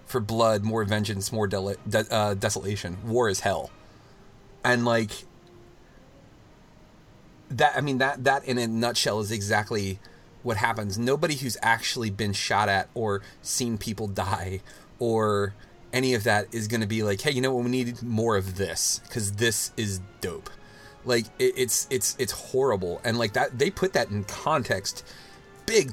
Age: 30-49